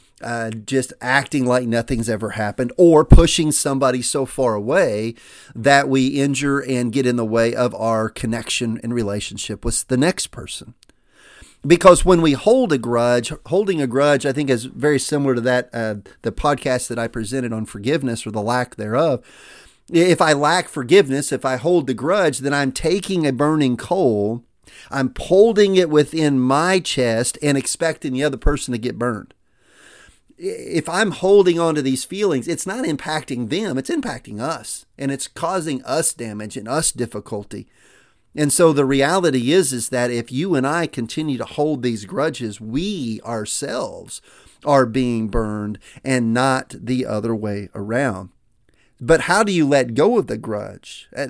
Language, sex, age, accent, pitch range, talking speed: English, male, 40-59, American, 120-150 Hz, 170 wpm